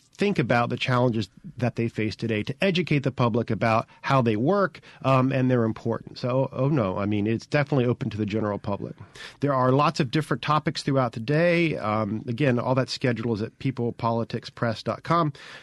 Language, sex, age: English, male, 40-59